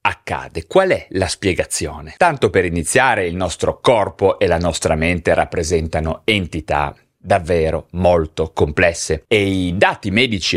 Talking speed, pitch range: 135 wpm, 90-130 Hz